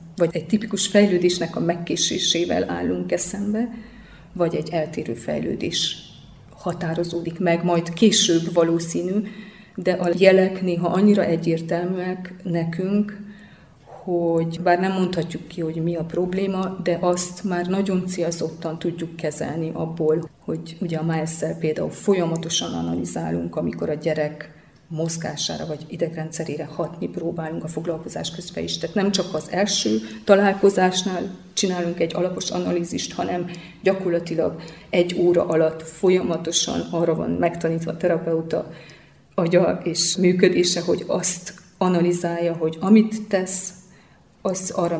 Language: Hungarian